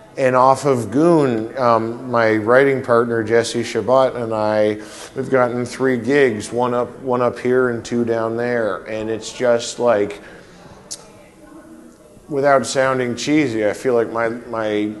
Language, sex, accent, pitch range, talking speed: English, male, American, 110-125 Hz, 150 wpm